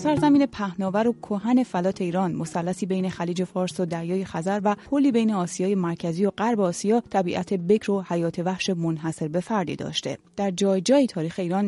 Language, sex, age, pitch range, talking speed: Persian, female, 30-49, 170-220 Hz, 170 wpm